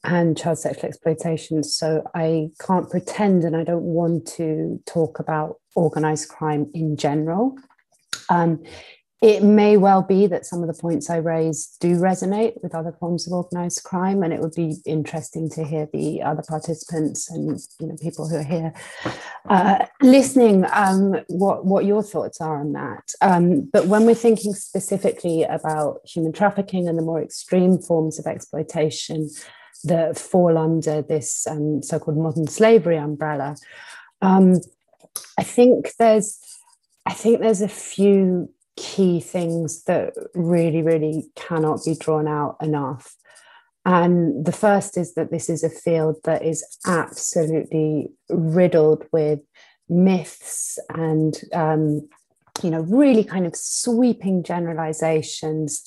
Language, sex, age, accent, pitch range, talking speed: English, female, 30-49, British, 155-190 Hz, 145 wpm